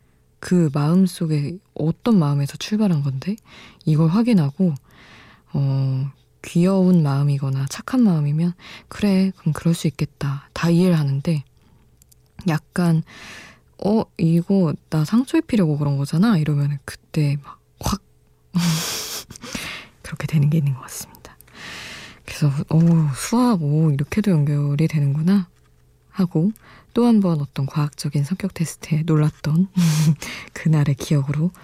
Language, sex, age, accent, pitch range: Korean, female, 20-39, native, 145-180 Hz